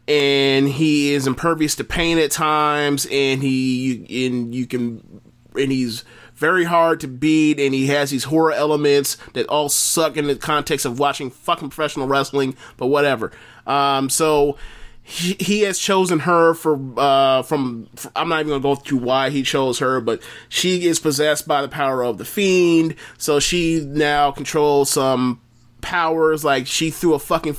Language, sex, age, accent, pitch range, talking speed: English, male, 30-49, American, 135-155 Hz, 170 wpm